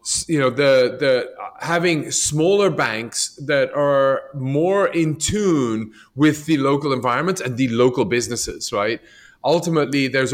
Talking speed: 135 wpm